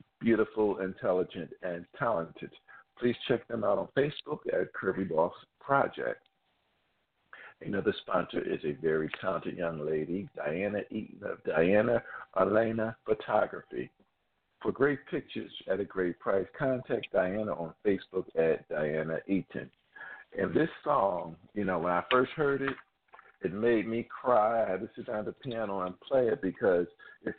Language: English